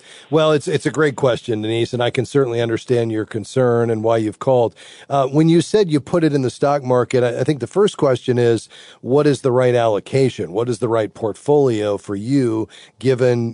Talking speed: 215 wpm